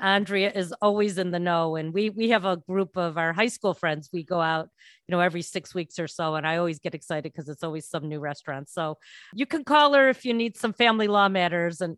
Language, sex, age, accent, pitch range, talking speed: English, female, 40-59, American, 170-200 Hz, 255 wpm